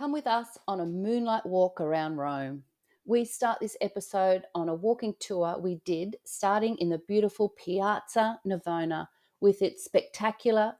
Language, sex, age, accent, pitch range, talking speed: English, female, 40-59, Australian, 175-225 Hz, 155 wpm